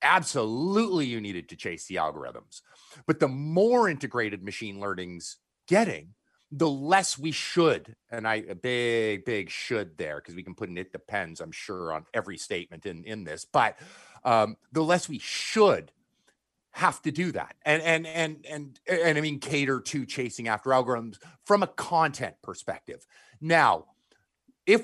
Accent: American